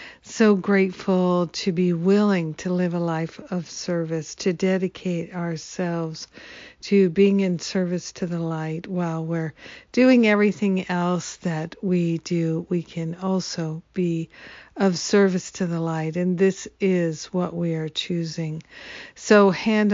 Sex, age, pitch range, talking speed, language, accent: female, 60-79, 170-195 Hz, 140 wpm, English, American